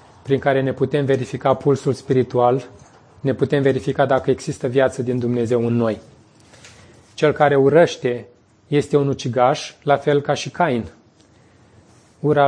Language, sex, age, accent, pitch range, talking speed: Romanian, male, 30-49, native, 120-140 Hz, 140 wpm